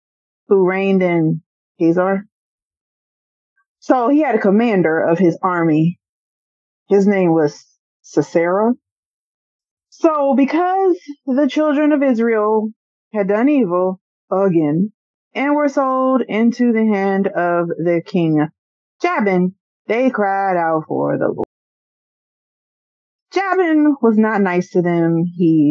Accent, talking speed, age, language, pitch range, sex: American, 115 wpm, 30-49, English, 165-230 Hz, female